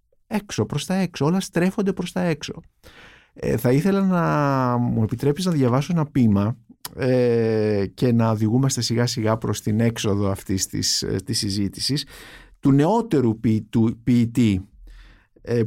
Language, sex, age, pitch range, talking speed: Greek, male, 50-69, 115-160 Hz, 145 wpm